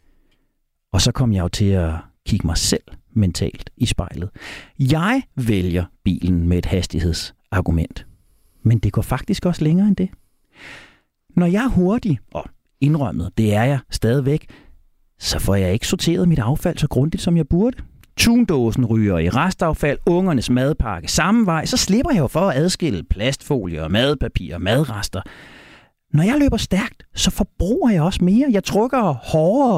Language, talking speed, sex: Danish, 160 wpm, male